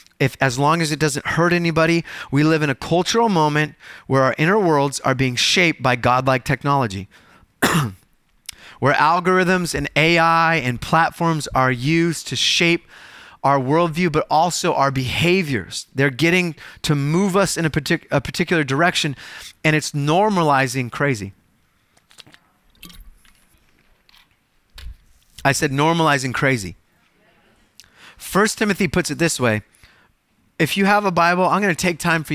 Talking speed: 140 wpm